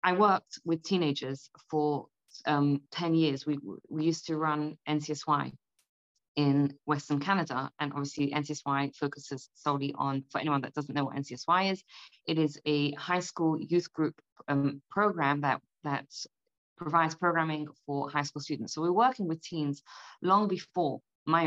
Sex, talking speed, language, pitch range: female, 160 wpm, English, 145-180 Hz